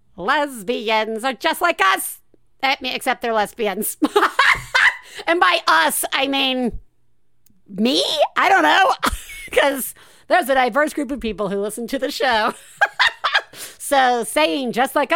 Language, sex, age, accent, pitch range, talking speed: English, female, 50-69, American, 210-275 Hz, 130 wpm